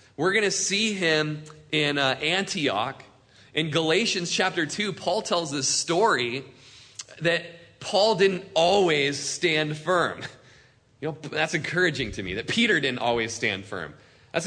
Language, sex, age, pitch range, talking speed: English, male, 30-49, 130-195 Hz, 145 wpm